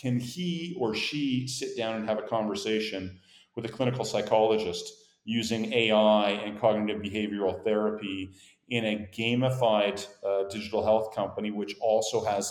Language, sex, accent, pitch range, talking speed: English, male, American, 100-115 Hz, 145 wpm